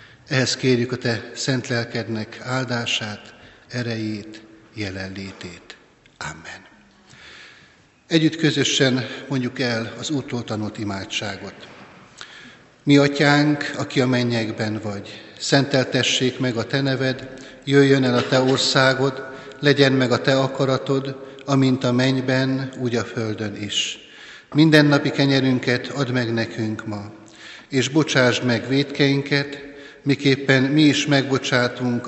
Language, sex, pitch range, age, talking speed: Hungarian, male, 115-140 Hz, 60-79, 110 wpm